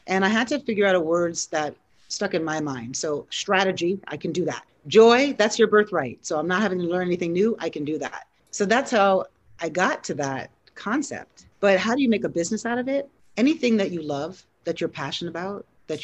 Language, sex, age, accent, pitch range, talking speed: English, female, 40-59, American, 160-210 Hz, 230 wpm